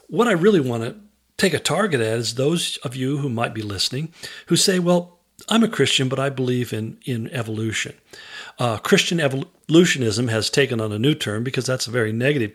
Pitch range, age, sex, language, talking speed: 125-160 Hz, 50-69, male, English, 205 wpm